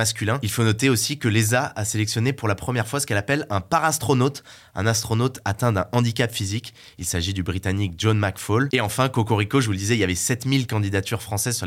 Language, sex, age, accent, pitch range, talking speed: French, male, 20-39, French, 105-130 Hz, 225 wpm